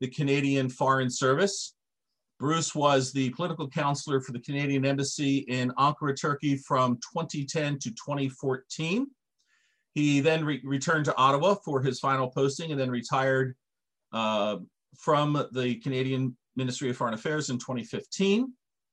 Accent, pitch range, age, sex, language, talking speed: American, 130-155 Hz, 40-59, male, Turkish, 135 wpm